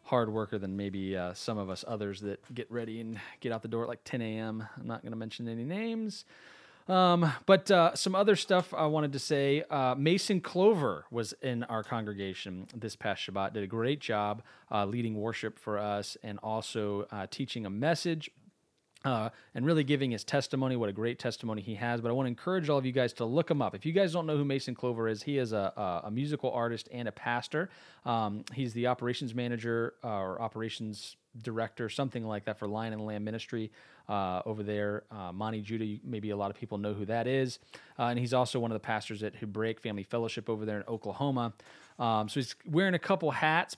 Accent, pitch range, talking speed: American, 110-135 Hz, 220 wpm